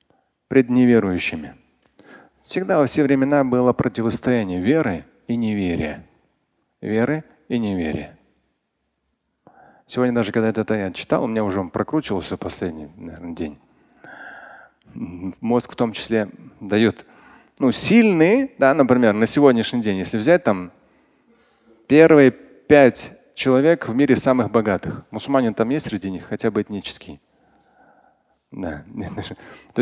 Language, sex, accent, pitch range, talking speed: Russian, male, native, 110-155 Hz, 110 wpm